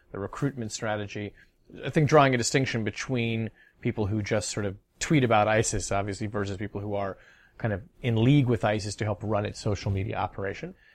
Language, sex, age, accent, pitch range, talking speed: English, male, 30-49, American, 100-120 Hz, 190 wpm